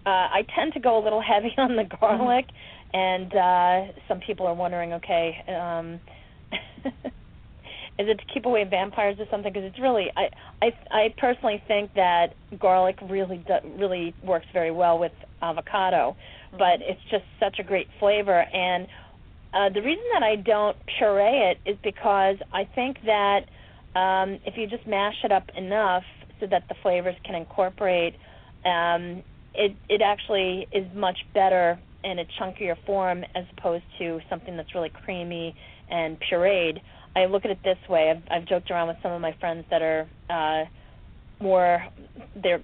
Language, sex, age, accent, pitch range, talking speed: English, female, 40-59, American, 170-205 Hz, 170 wpm